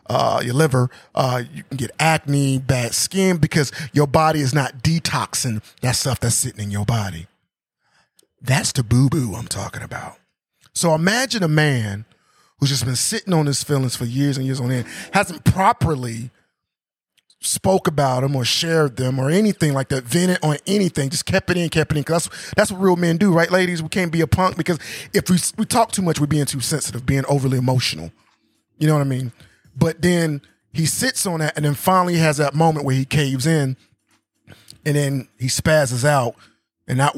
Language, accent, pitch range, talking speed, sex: English, American, 120-160 Hz, 200 wpm, male